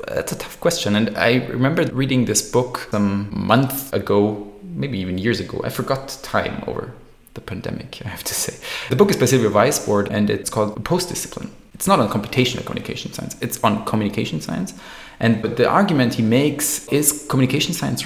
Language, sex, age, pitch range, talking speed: English, male, 20-39, 105-130 Hz, 190 wpm